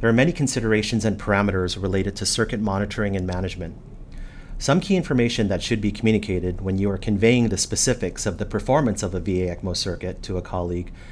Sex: male